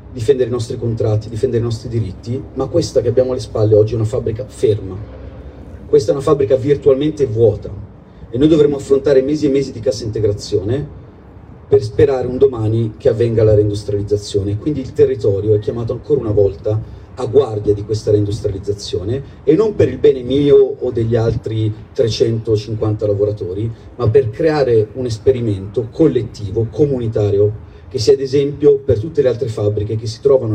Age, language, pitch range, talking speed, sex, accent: 40-59, Italian, 105-130 Hz, 170 wpm, male, native